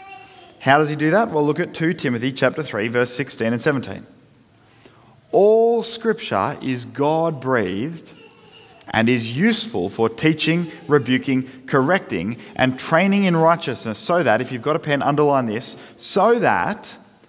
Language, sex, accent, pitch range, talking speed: English, male, Australian, 120-170 Hz, 145 wpm